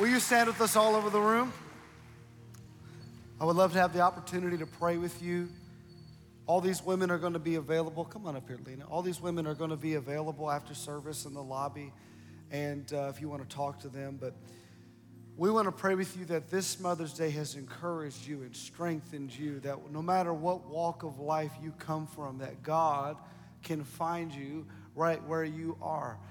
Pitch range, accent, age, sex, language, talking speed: 150-185 Hz, American, 40-59, male, English, 210 wpm